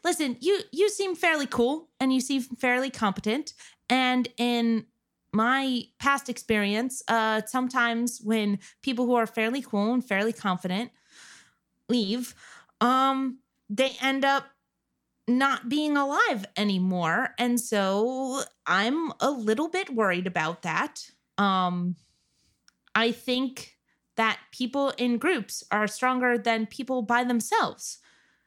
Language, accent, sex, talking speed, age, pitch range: English, American, female, 120 wpm, 20-39, 215-270 Hz